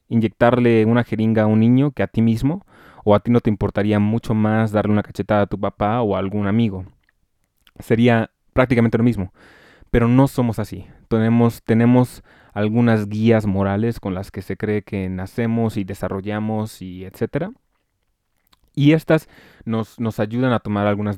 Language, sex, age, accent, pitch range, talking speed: Spanish, male, 20-39, Mexican, 100-115 Hz, 170 wpm